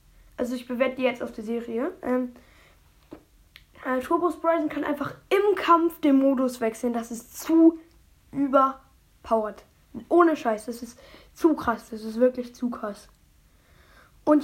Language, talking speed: German, 145 wpm